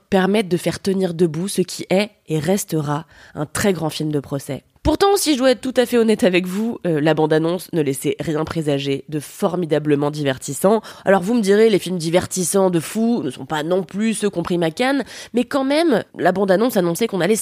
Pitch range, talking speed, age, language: 165-225 Hz, 215 wpm, 20-39, French